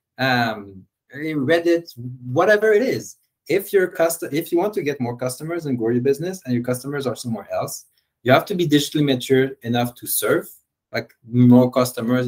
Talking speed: 180 wpm